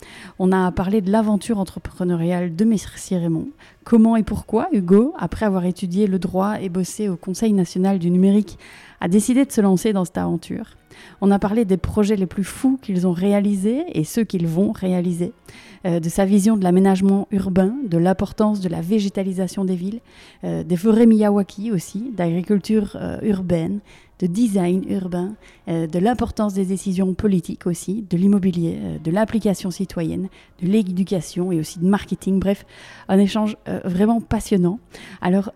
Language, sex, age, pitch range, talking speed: French, female, 30-49, 180-210 Hz, 170 wpm